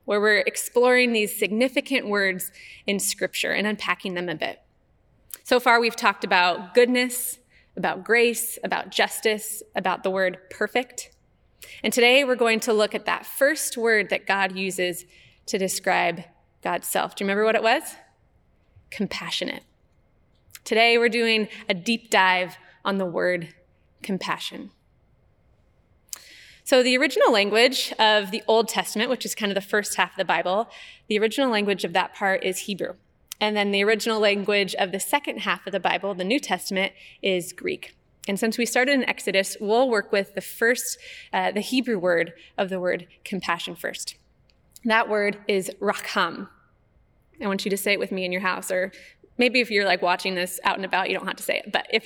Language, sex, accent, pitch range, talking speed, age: English, female, American, 190-235 Hz, 180 wpm, 20-39